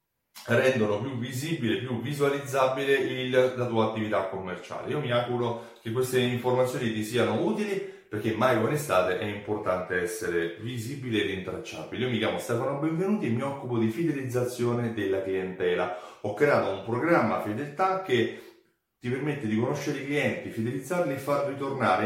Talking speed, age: 150 wpm, 30-49